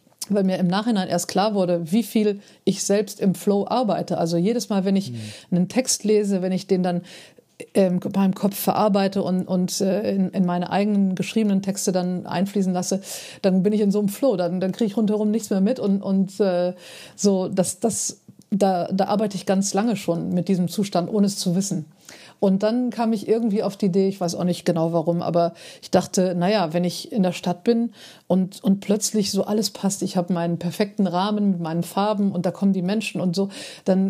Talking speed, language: 210 wpm, German